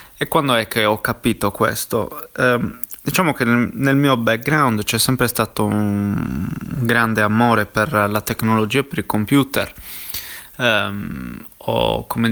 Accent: native